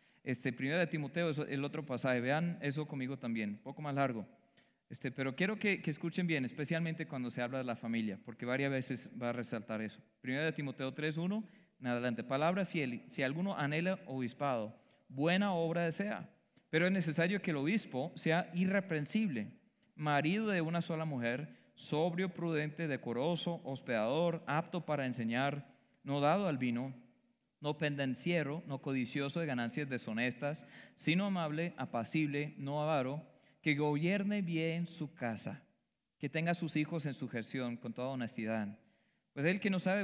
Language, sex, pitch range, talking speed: Spanish, male, 130-170 Hz, 165 wpm